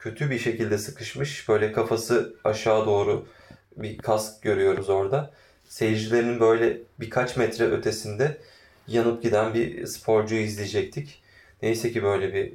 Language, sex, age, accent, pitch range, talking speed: Turkish, male, 30-49, native, 105-130 Hz, 125 wpm